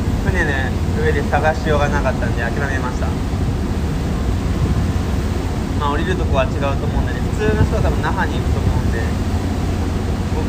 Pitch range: 85-95 Hz